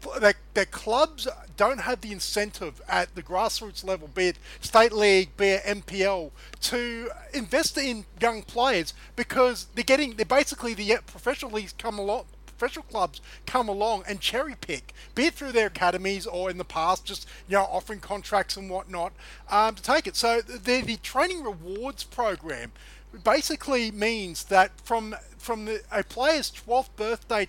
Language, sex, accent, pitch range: English, male, Australian, 195-250 Hz